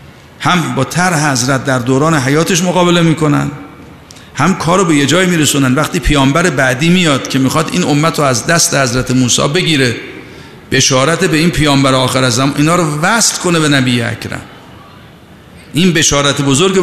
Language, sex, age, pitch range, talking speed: Persian, male, 50-69, 130-175 Hz, 160 wpm